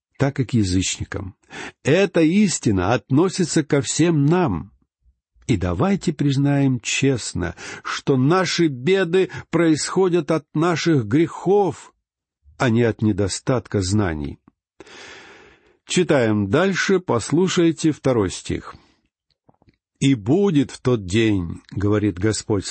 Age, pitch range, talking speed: 60-79, 110-160 Hz, 100 wpm